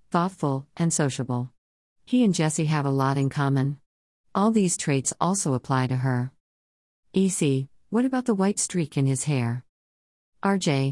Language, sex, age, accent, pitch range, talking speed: English, female, 50-69, American, 130-175 Hz, 155 wpm